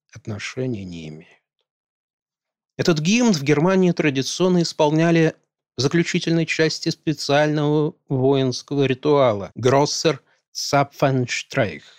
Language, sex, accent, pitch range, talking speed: Russian, male, native, 120-165 Hz, 85 wpm